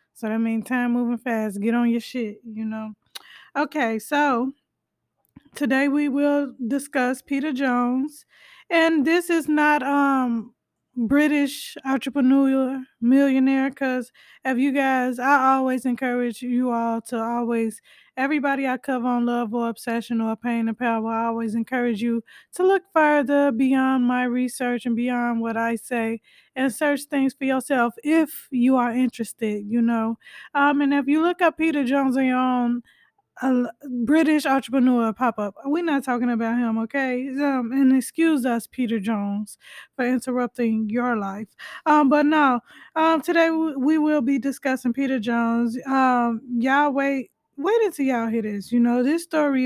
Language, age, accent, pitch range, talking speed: English, 20-39, American, 235-280 Hz, 160 wpm